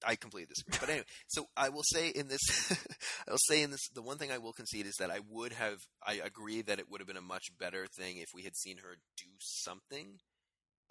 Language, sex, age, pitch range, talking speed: English, male, 20-39, 90-130 Hz, 265 wpm